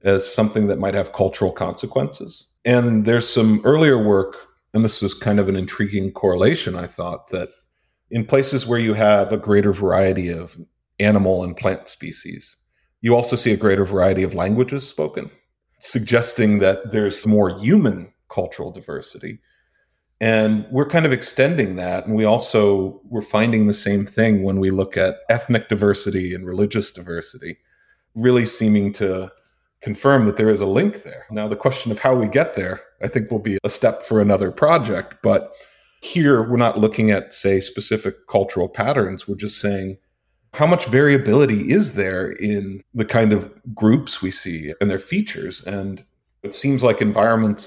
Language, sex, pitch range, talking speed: English, male, 95-115 Hz, 170 wpm